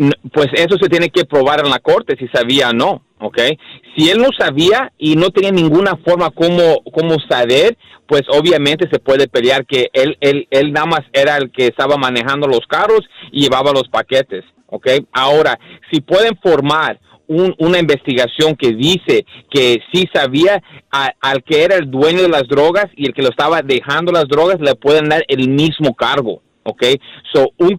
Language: Spanish